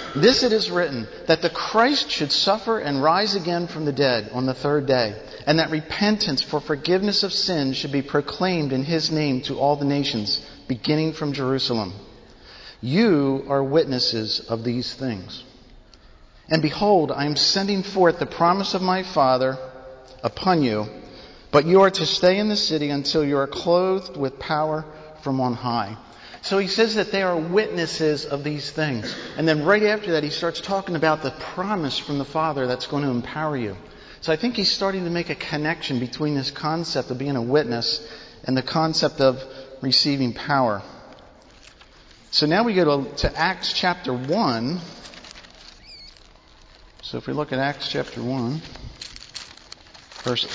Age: 50-69